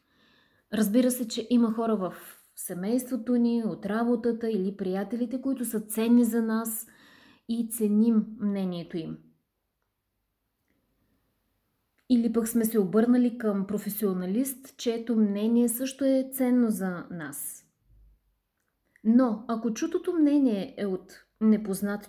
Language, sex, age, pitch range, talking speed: Bulgarian, female, 20-39, 205-255 Hz, 115 wpm